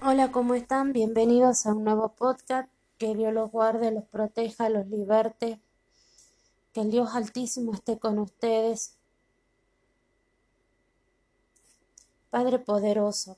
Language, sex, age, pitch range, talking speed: Spanish, female, 20-39, 210-225 Hz, 110 wpm